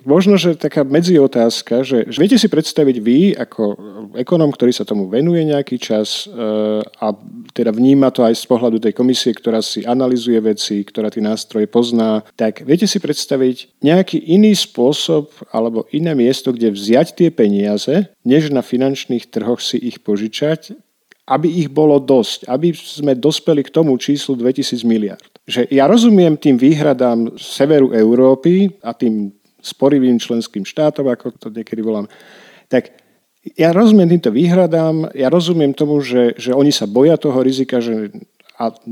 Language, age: Slovak, 40-59